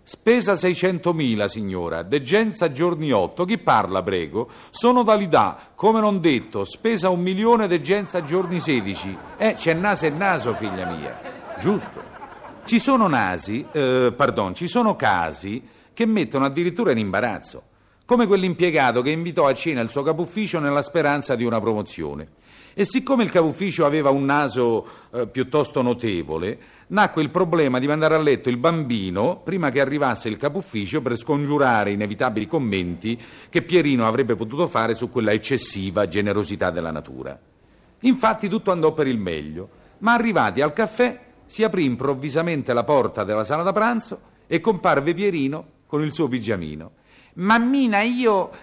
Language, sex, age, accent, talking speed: Italian, male, 50-69, native, 155 wpm